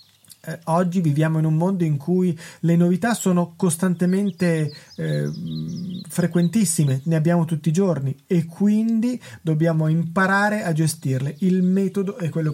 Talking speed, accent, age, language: 135 wpm, native, 30-49, Italian